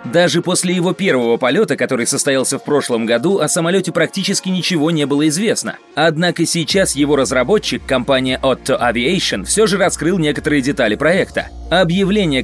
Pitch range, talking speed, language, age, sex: 140-185 Hz, 150 wpm, Russian, 30-49, male